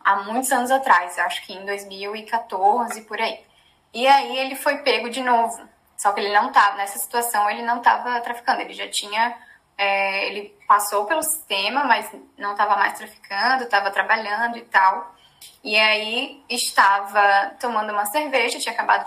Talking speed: 165 wpm